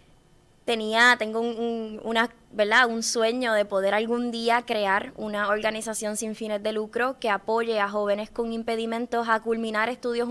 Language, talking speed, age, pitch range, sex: Spanish, 165 wpm, 20-39, 210-240 Hz, female